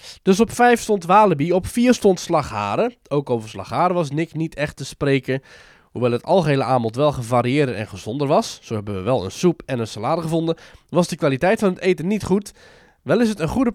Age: 20-39